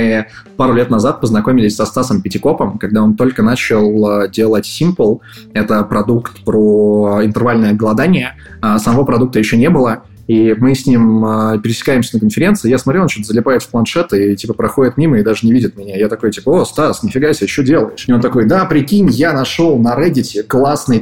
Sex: male